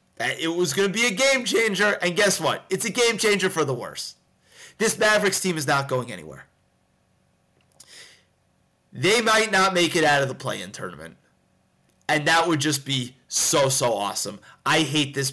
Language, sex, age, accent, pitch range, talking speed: English, male, 30-49, American, 150-210 Hz, 170 wpm